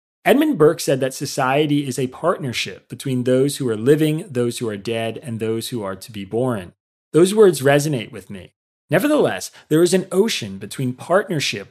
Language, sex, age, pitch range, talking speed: English, male, 30-49, 115-150 Hz, 185 wpm